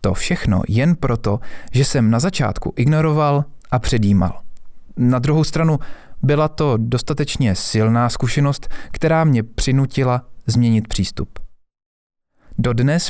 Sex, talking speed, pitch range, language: male, 115 wpm, 110-145 Hz, Czech